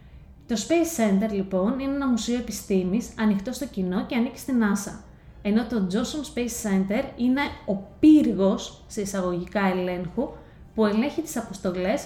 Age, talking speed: 20-39, 150 wpm